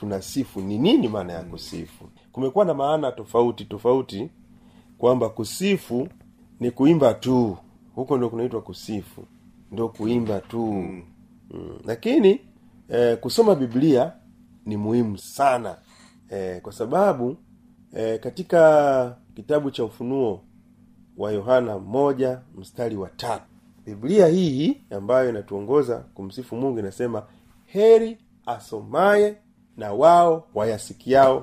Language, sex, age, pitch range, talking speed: Swahili, male, 40-59, 115-175 Hz, 110 wpm